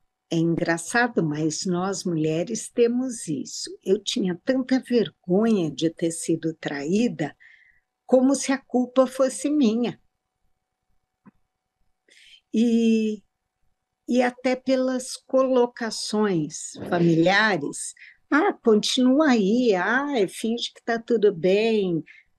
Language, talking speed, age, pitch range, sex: Portuguese, 95 wpm, 50-69, 175-245 Hz, female